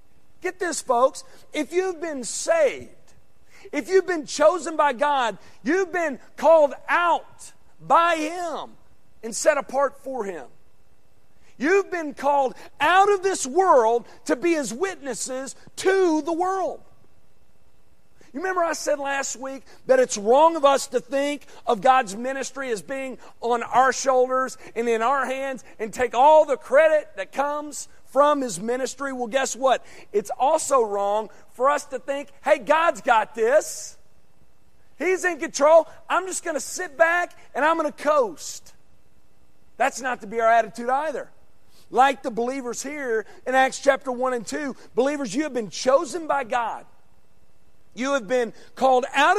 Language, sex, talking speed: English, male, 155 wpm